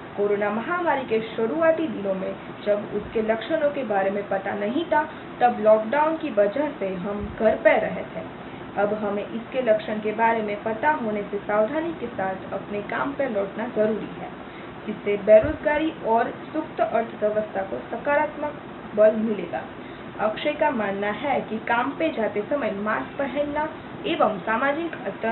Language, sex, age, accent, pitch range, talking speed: Hindi, female, 20-39, native, 205-290 Hz, 155 wpm